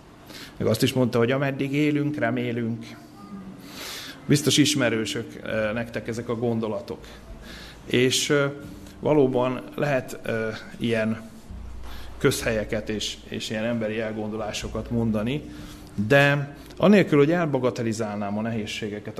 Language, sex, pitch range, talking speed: Hungarian, male, 110-130 Hz, 95 wpm